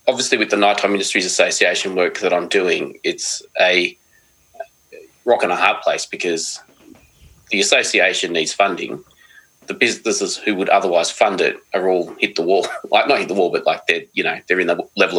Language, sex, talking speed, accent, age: English, male, 190 wpm, Australian, 20-39